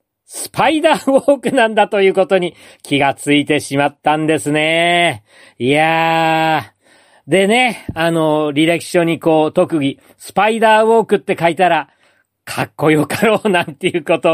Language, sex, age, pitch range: Japanese, male, 40-59, 140-190 Hz